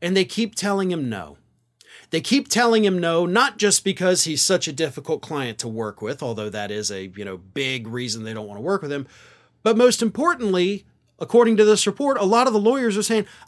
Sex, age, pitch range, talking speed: male, 40-59, 130-210 Hz, 225 wpm